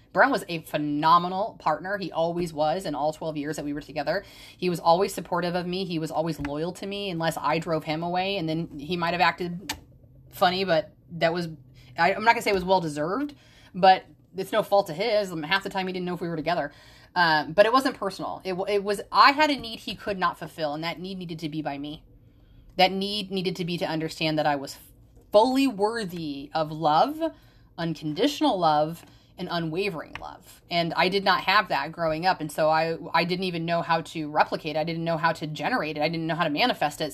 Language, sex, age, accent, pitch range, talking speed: English, female, 30-49, American, 150-190 Hz, 235 wpm